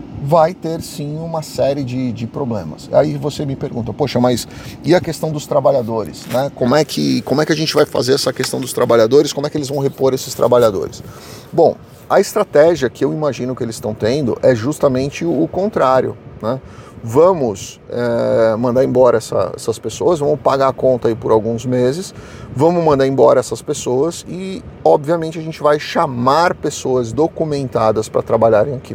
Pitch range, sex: 120-145 Hz, male